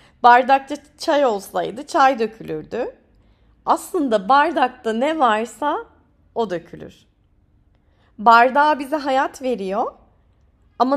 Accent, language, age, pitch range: native, Turkish, 30-49, 215-290 Hz